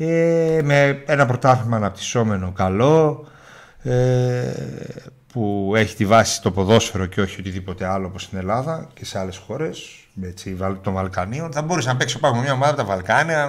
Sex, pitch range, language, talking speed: male, 95-135 Hz, Greek, 150 wpm